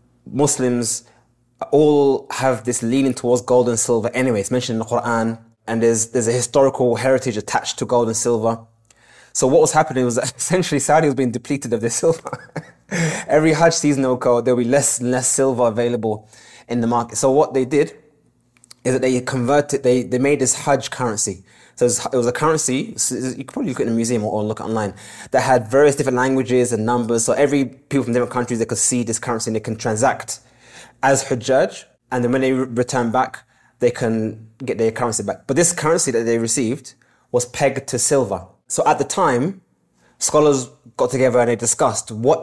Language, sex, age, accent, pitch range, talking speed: English, male, 20-39, British, 115-135 Hz, 200 wpm